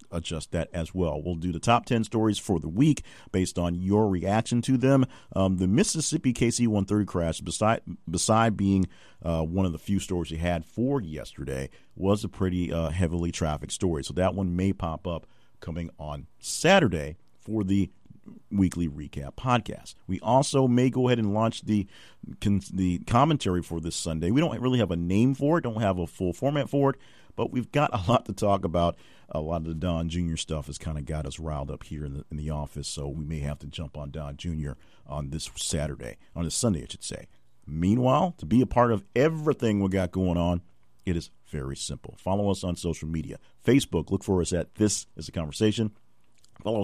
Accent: American